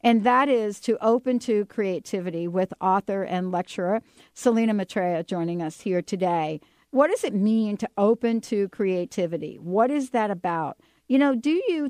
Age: 60-79